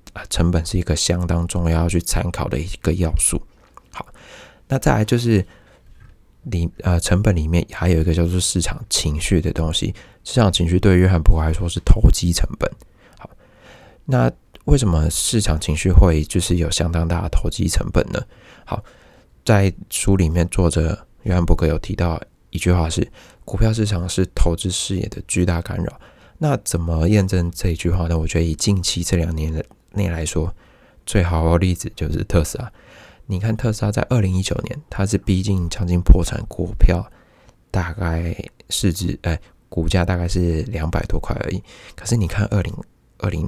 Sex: male